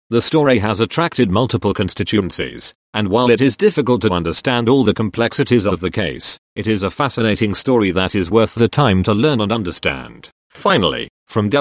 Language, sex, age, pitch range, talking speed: English, male, 40-59, 100-130 Hz, 180 wpm